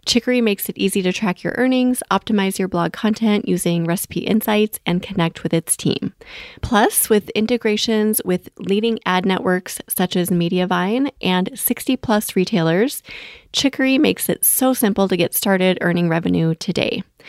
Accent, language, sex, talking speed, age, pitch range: American, English, female, 155 wpm, 30-49, 185-230 Hz